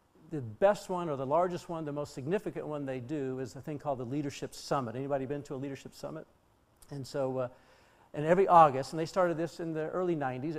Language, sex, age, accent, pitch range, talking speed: English, male, 60-79, American, 140-175 Hz, 225 wpm